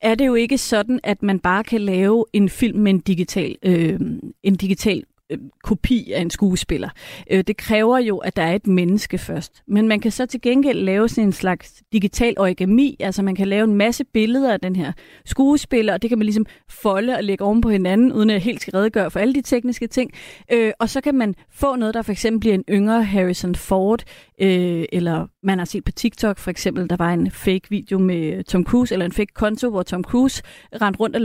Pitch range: 190-230 Hz